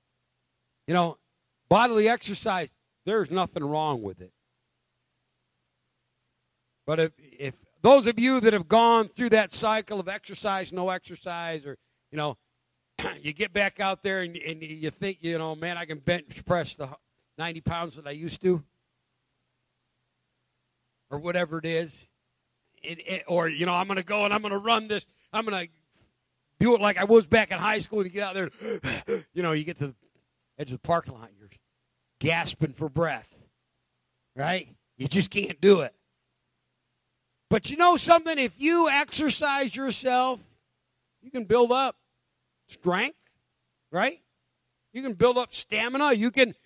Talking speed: 165 wpm